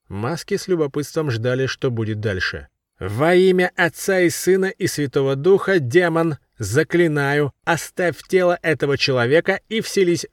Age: 30-49